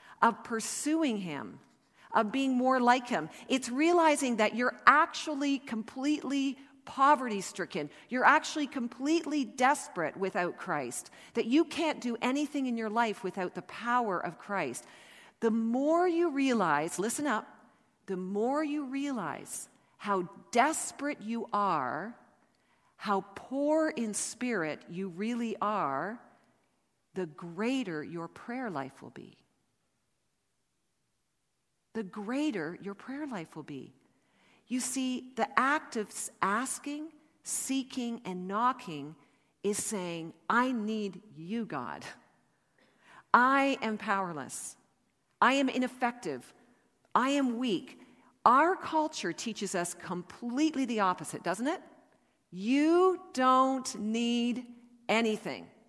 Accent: American